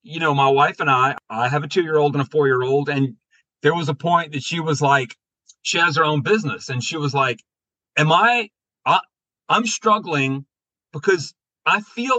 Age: 40-59